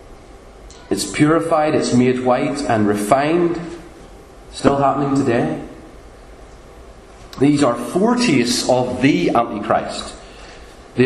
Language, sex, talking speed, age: English, male, 90 wpm, 40-59